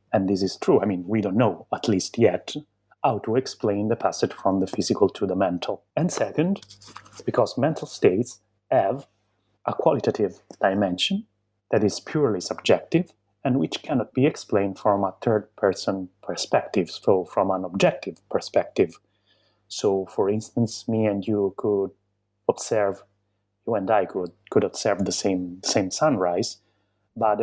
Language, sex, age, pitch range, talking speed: English, male, 30-49, 95-110 Hz, 155 wpm